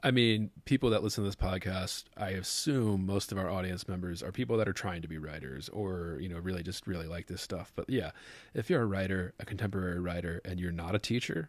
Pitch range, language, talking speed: 90-105 Hz, English, 240 wpm